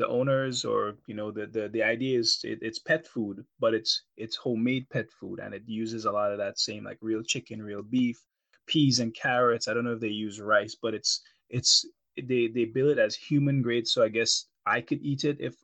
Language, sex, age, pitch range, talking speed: English, male, 20-39, 110-130 Hz, 235 wpm